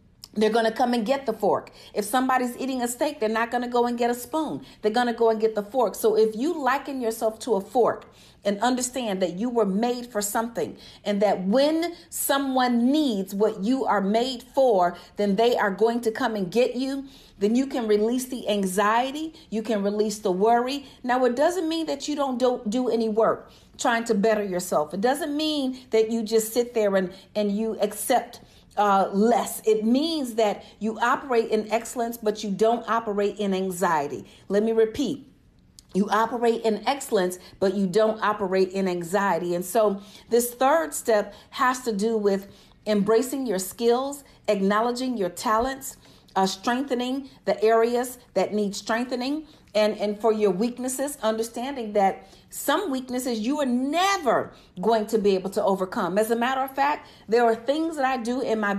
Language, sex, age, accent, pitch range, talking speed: English, female, 40-59, American, 210-255 Hz, 185 wpm